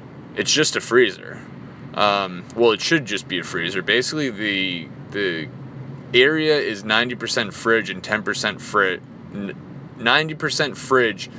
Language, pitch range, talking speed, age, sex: English, 120-150 Hz, 140 wpm, 20-39, male